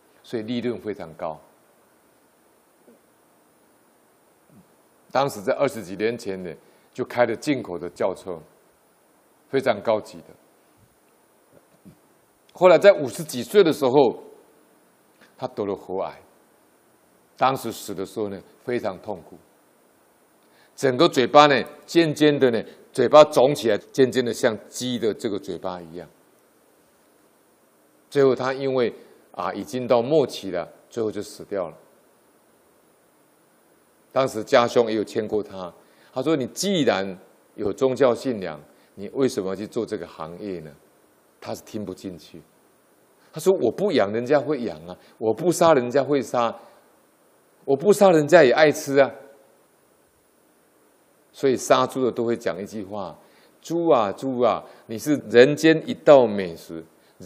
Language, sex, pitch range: Chinese, male, 105-150 Hz